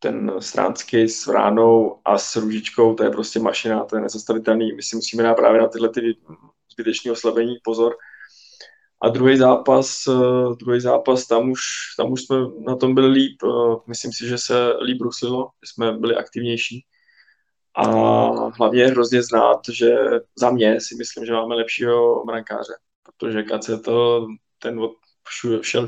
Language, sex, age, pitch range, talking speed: Czech, male, 20-39, 115-130 Hz, 155 wpm